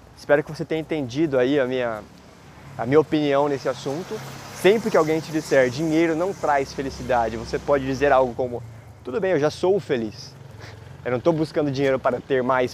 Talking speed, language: 190 wpm, Portuguese